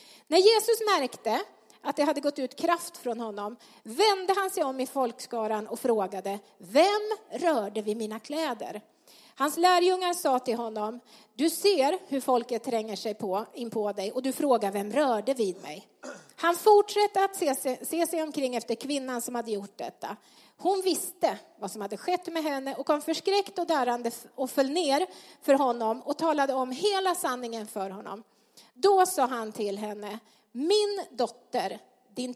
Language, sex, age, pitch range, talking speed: Swedish, female, 30-49, 225-345 Hz, 170 wpm